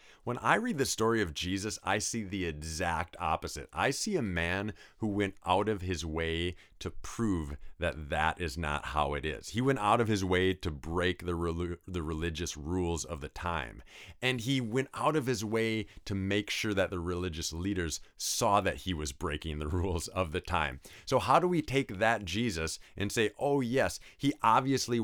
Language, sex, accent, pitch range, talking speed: English, male, American, 80-105 Hz, 200 wpm